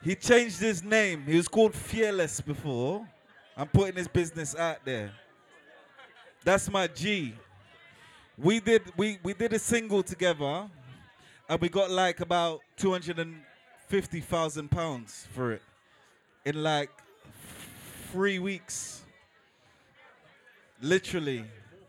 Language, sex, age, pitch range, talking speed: English, male, 20-39, 150-205 Hz, 110 wpm